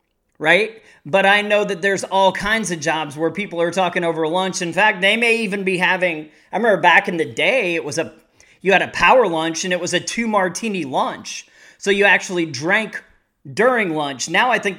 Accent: American